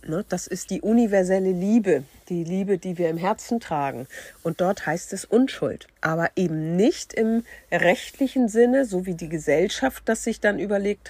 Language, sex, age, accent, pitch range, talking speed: German, female, 50-69, German, 170-225 Hz, 170 wpm